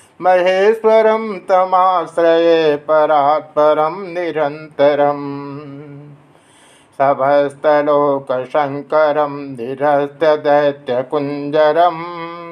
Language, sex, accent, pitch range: Hindi, male, native, 145-185 Hz